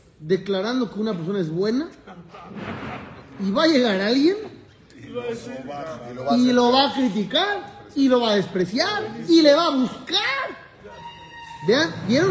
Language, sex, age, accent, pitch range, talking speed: Spanish, male, 40-59, Mexican, 180-280 Hz, 135 wpm